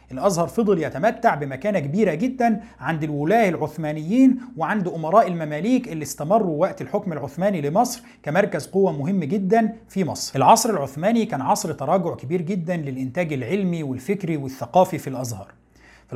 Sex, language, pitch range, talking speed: male, Arabic, 150-215 Hz, 140 wpm